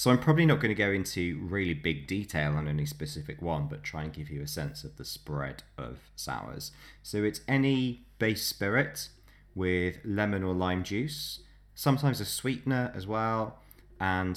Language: English